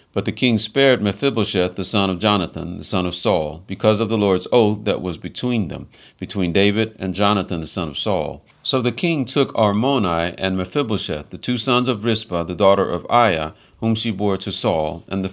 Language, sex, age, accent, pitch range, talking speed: English, male, 50-69, American, 90-115 Hz, 210 wpm